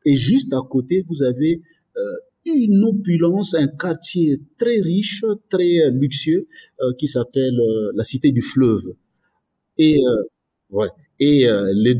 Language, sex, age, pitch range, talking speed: French, male, 50-69, 120-165 Hz, 150 wpm